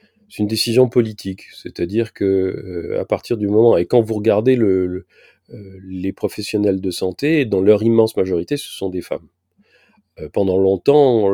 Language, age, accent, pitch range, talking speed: French, 40-59, French, 95-125 Hz, 170 wpm